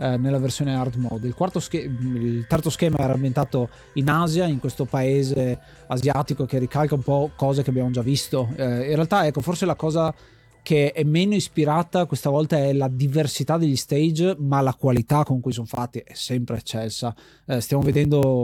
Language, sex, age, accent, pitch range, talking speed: Italian, male, 20-39, native, 130-155 Hz, 190 wpm